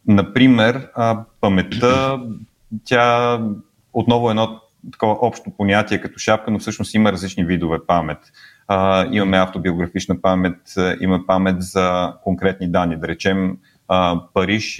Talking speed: 115 wpm